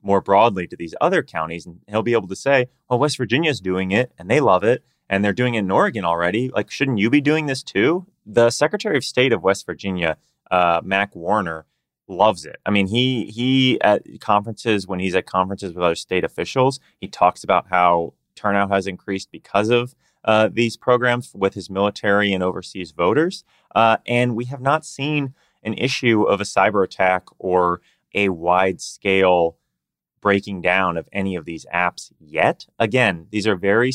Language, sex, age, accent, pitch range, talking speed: English, male, 30-49, American, 95-125 Hz, 190 wpm